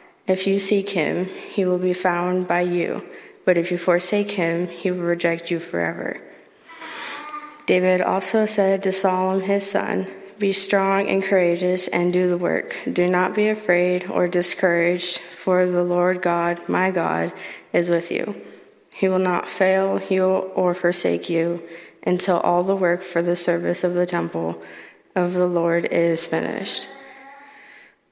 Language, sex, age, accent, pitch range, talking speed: English, female, 20-39, American, 175-195 Hz, 155 wpm